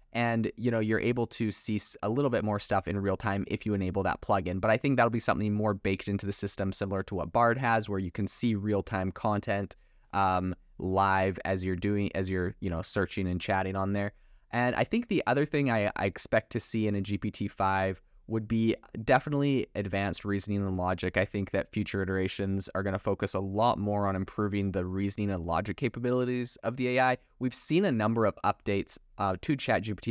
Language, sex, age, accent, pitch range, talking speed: English, male, 20-39, American, 95-115 Hz, 220 wpm